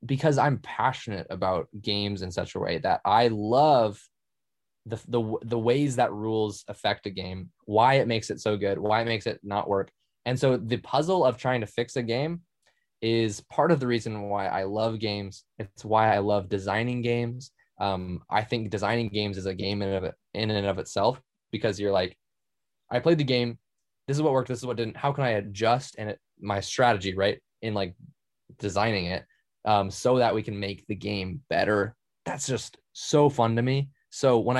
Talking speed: 205 wpm